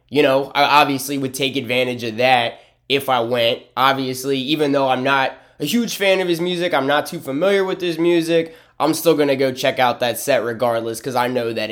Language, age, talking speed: English, 20-39, 225 wpm